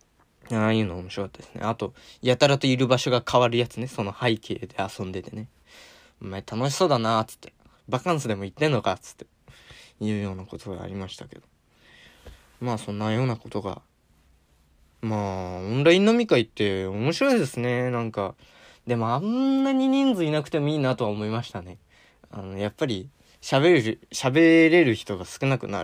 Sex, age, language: male, 20-39, Japanese